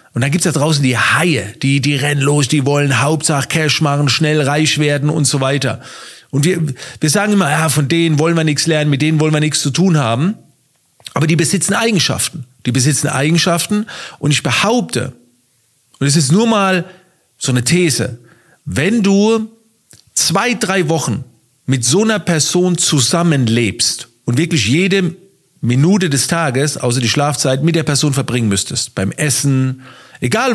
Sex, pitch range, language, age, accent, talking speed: male, 135-180 Hz, German, 40-59, German, 175 wpm